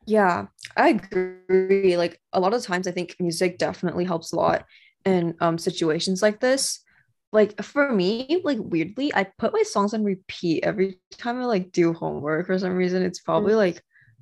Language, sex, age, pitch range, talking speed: English, female, 10-29, 170-210 Hz, 180 wpm